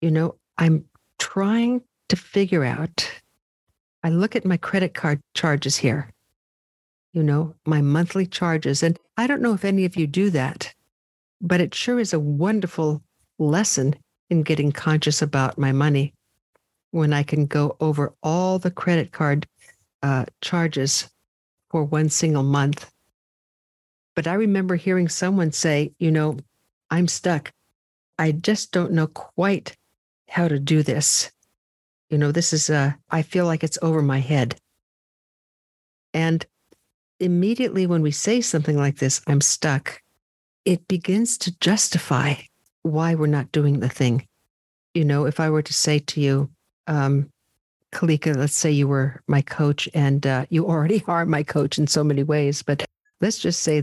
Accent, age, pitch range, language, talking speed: American, 60-79, 140-170 Hz, English, 155 wpm